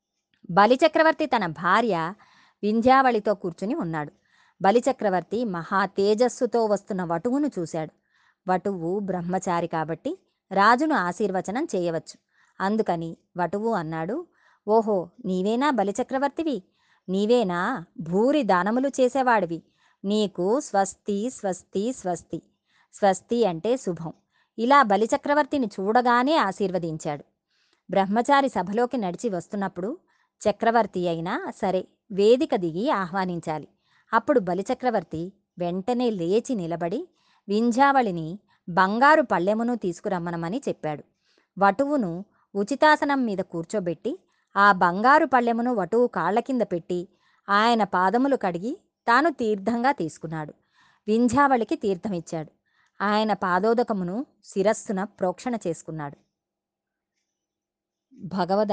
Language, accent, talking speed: Telugu, native, 85 wpm